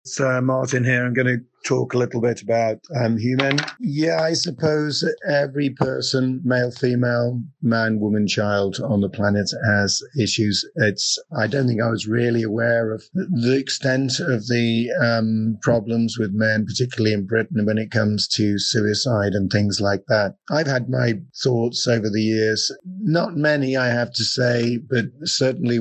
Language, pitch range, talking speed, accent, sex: English, 105-125 Hz, 165 wpm, British, male